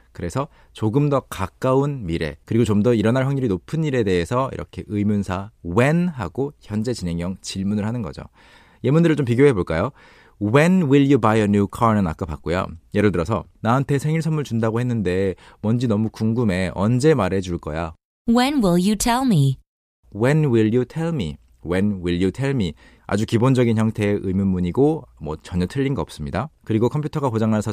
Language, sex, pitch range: Korean, male, 95-130 Hz